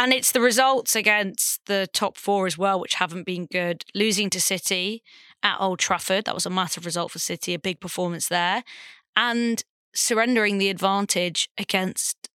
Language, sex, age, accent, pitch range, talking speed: English, female, 20-39, British, 180-215 Hz, 175 wpm